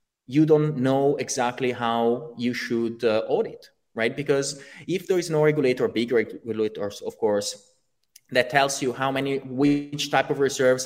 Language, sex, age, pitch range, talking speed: English, male, 30-49, 120-155 Hz, 160 wpm